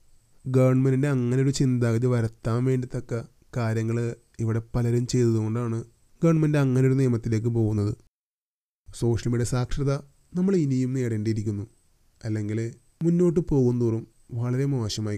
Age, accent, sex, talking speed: 20-39, native, male, 105 wpm